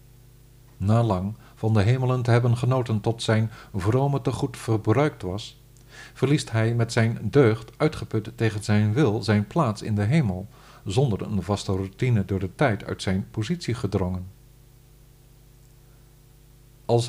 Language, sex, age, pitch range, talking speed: Dutch, male, 50-69, 105-130 Hz, 145 wpm